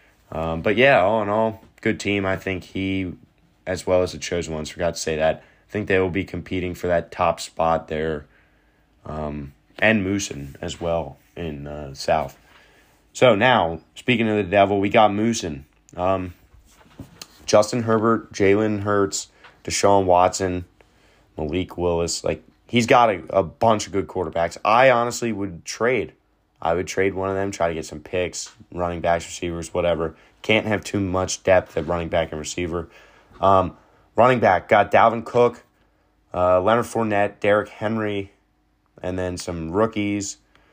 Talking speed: 165 wpm